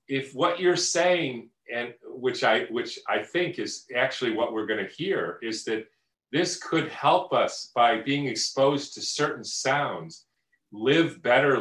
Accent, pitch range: American, 110-140 Hz